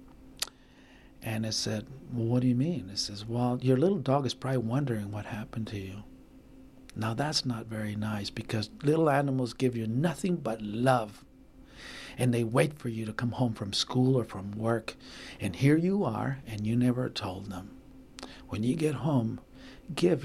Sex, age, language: male, 50-69, English